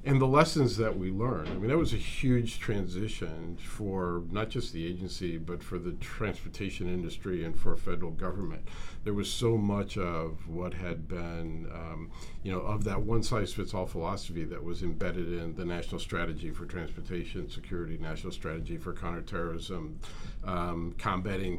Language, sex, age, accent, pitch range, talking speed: English, male, 50-69, American, 85-110 Hz, 160 wpm